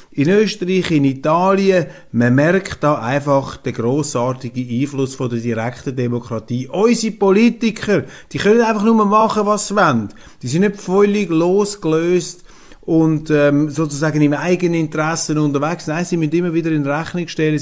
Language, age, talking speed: German, 30-49, 150 wpm